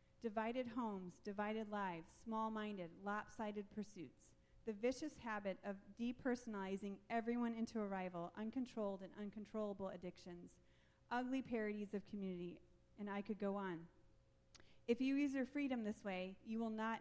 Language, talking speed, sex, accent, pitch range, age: English, 140 wpm, female, American, 200-245 Hz, 30-49